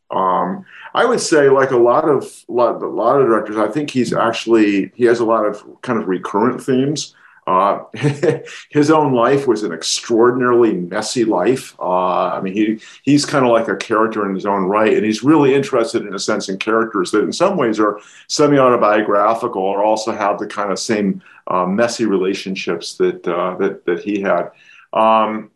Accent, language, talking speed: American, English, 190 wpm